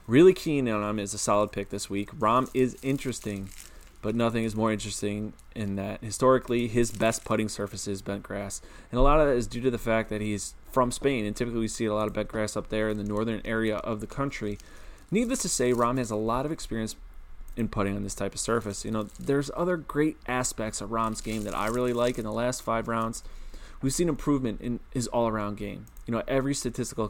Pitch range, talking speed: 105-125 Hz, 235 wpm